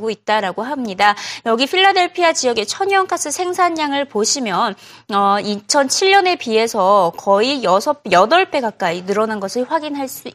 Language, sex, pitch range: Korean, female, 220-335 Hz